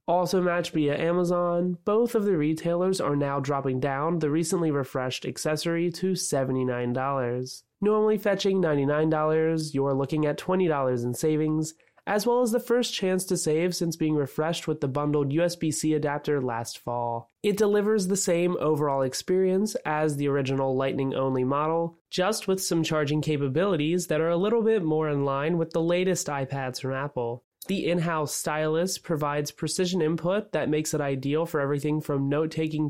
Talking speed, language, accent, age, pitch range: 160 wpm, English, American, 20-39, 140-175 Hz